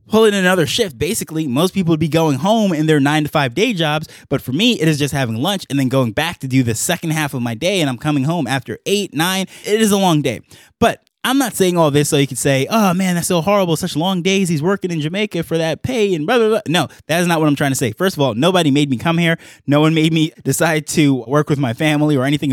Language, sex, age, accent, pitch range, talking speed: English, male, 20-39, American, 135-170 Hz, 280 wpm